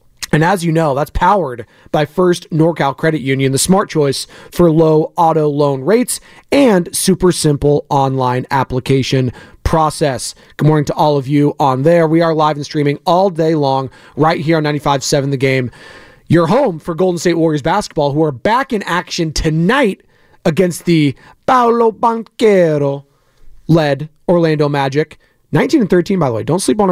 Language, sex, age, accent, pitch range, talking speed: English, male, 30-49, American, 140-170 Hz, 165 wpm